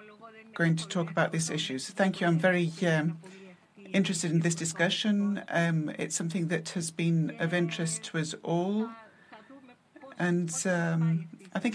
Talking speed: 155 wpm